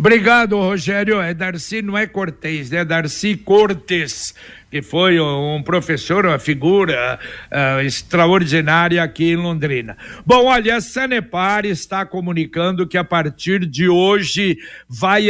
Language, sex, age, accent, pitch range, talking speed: Portuguese, male, 60-79, Brazilian, 180-220 Hz, 135 wpm